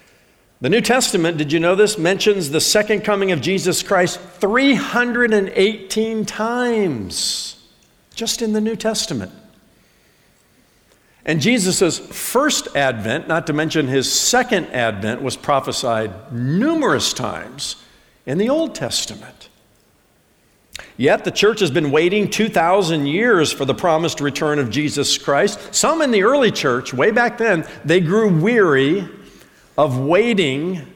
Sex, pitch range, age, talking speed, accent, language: male, 145-210 Hz, 60-79, 130 wpm, American, English